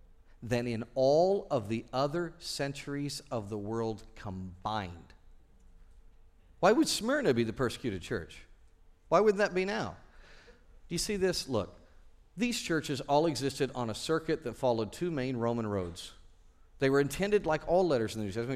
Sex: male